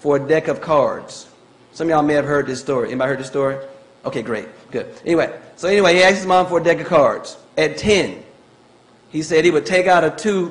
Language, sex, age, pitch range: English, male, 40-59, 150-180 Hz